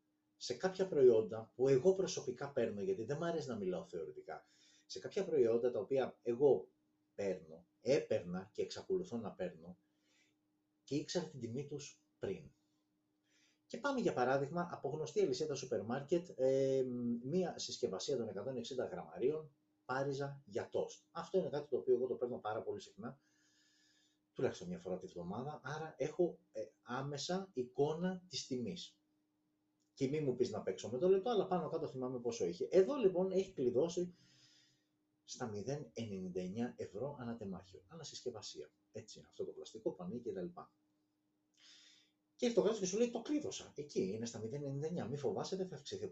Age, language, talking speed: 30-49, Greek, 155 wpm